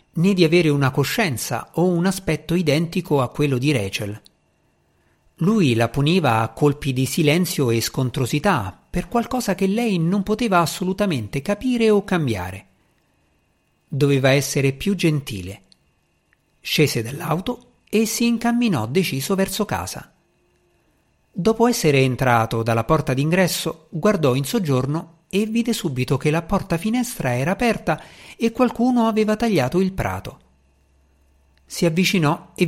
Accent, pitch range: native, 125-190 Hz